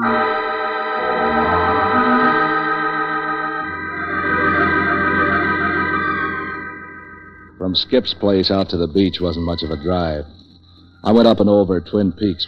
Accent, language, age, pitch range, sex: American, English, 60-79, 85-105 Hz, male